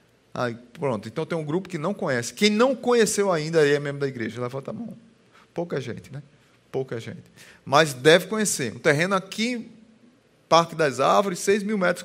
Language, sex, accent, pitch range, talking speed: Portuguese, male, Brazilian, 180-230 Hz, 190 wpm